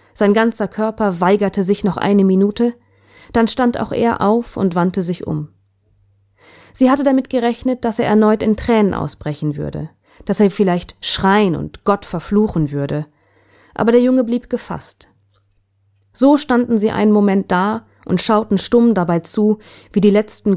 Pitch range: 150-230 Hz